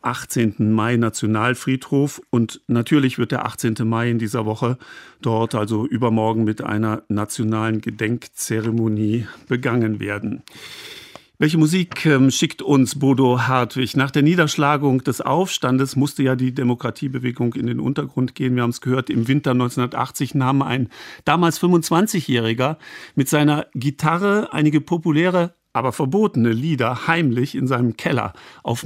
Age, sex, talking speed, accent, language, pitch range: 50-69, male, 135 wpm, German, German, 120-150 Hz